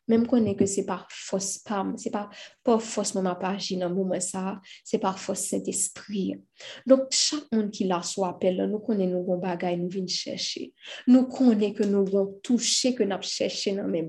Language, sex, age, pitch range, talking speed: French, female, 20-39, 185-220 Hz, 190 wpm